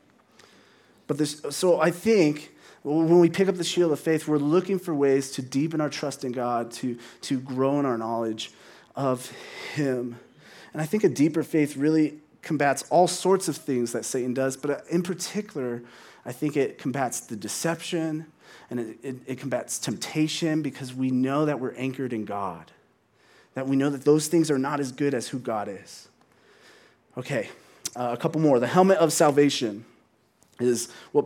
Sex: male